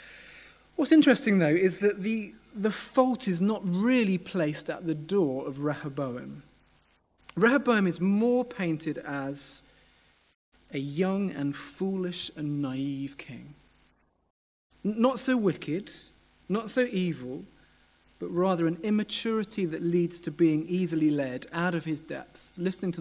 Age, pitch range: 30-49, 140-190 Hz